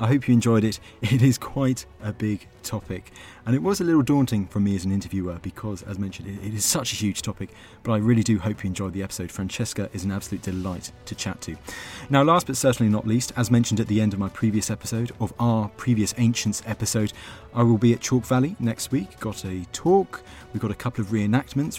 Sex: male